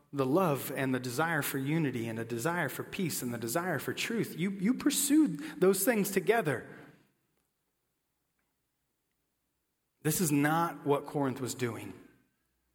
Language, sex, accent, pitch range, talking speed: English, male, American, 125-165 Hz, 140 wpm